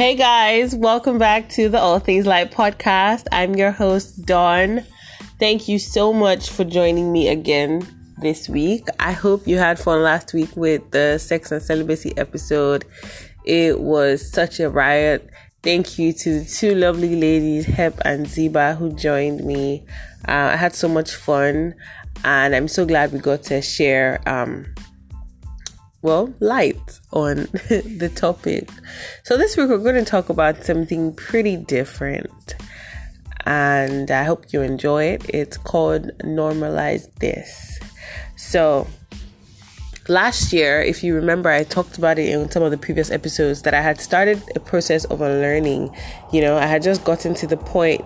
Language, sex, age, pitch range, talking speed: English, female, 20-39, 145-180 Hz, 160 wpm